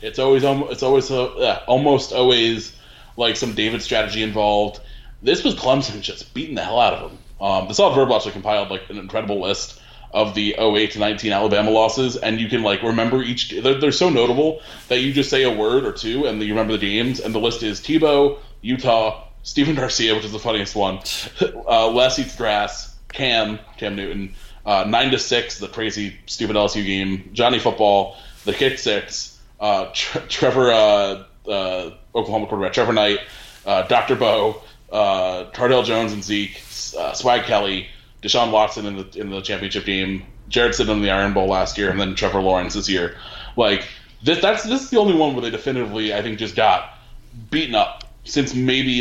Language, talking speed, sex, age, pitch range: English, 190 wpm, male, 20-39, 100-125 Hz